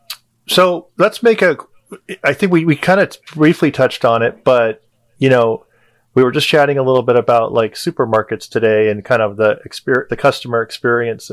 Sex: male